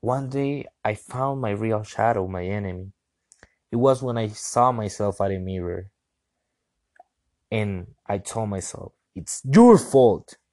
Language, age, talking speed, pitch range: English, 20-39, 140 wpm, 100-125 Hz